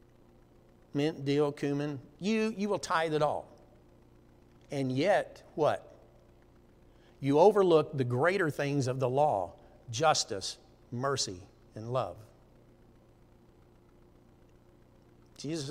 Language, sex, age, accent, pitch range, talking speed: English, male, 60-79, American, 120-155 Hz, 95 wpm